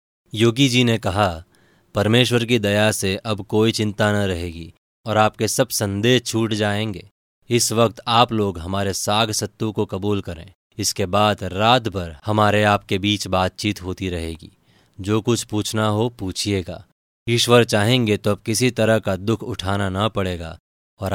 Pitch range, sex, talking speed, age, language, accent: 95-115 Hz, male, 160 wpm, 30-49, Hindi, native